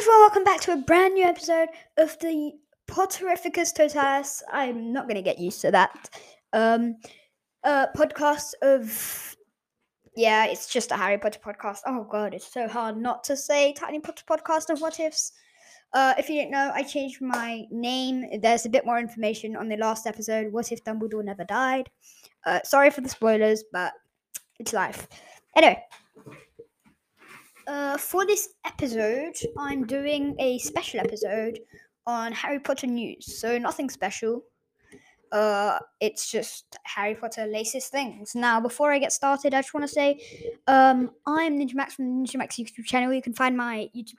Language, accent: English, British